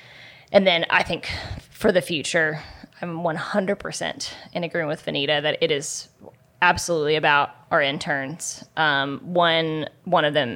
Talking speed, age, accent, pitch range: 140 wpm, 20-39, American, 140-165 Hz